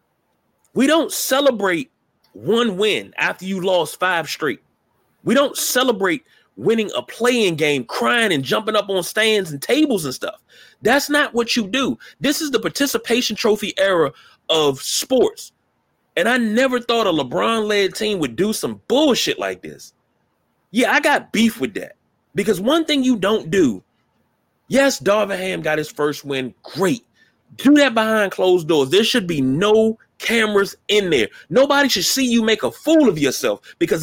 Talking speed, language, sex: 165 wpm, English, male